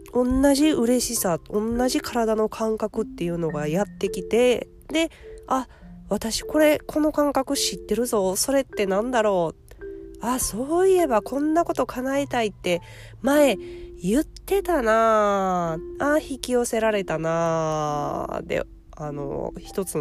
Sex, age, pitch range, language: female, 20-39, 150-240 Hz, Japanese